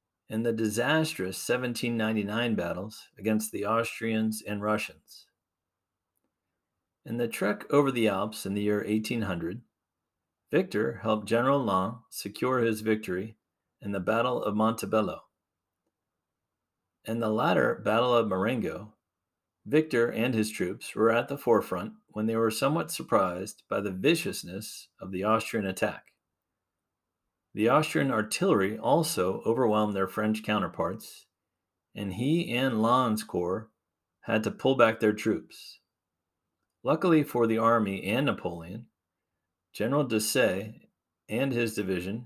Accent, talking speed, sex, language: American, 125 wpm, male, English